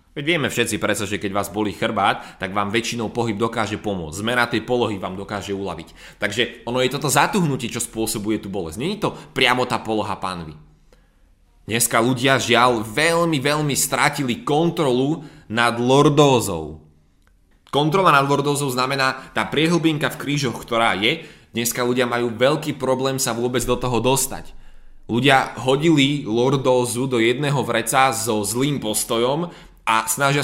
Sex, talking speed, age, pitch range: male, 150 wpm, 20-39, 100-135 Hz